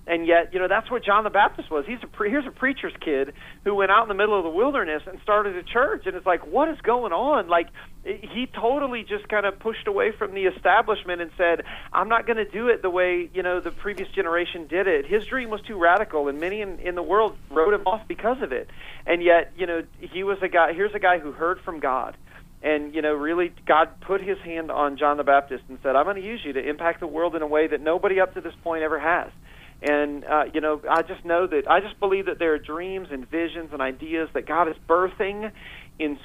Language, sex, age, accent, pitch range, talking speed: English, male, 40-59, American, 150-195 Hz, 255 wpm